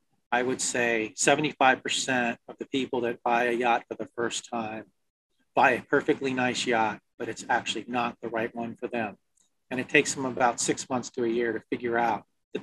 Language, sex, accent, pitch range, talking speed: English, male, American, 115-135 Hz, 205 wpm